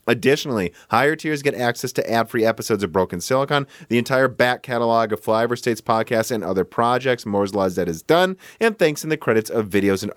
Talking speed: 210 wpm